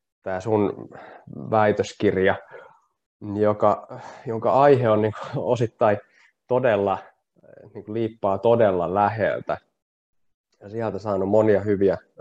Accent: native